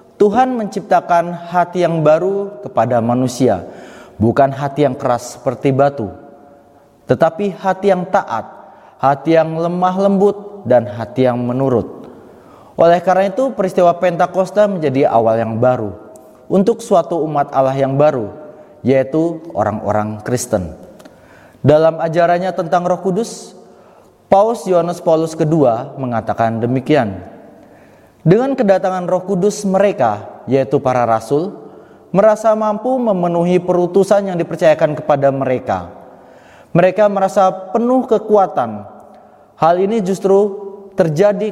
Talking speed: 115 wpm